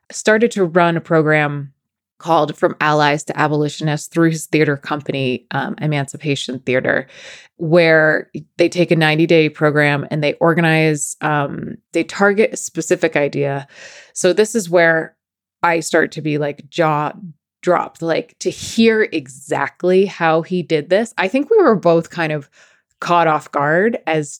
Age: 20-39